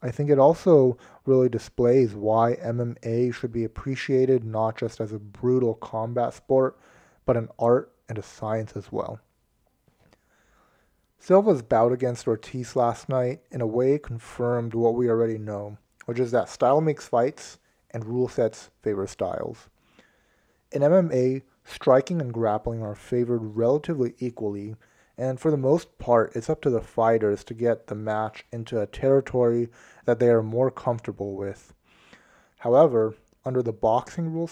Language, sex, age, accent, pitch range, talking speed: English, male, 30-49, American, 115-130 Hz, 155 wpm